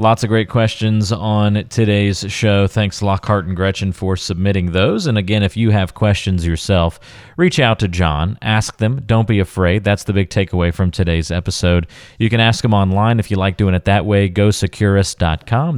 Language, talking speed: English, 190 wpm